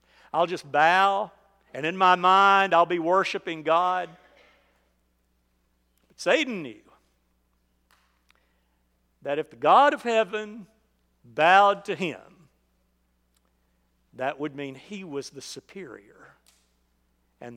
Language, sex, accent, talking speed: English, male, American, 105 wpm